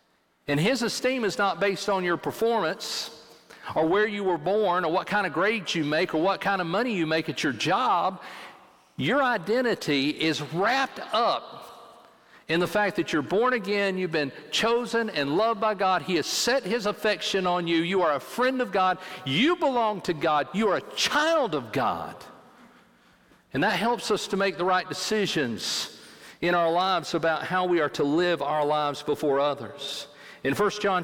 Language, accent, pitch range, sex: English, American, 160-200 Hz, male